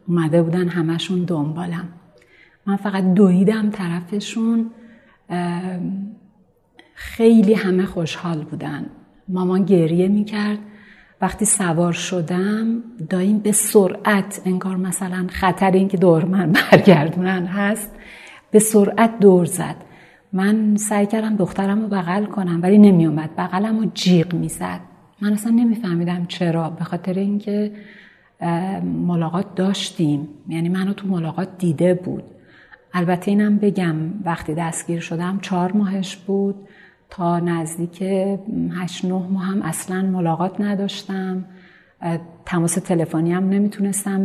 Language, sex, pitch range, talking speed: Persian, female, 170-200 Hz, 115 wpm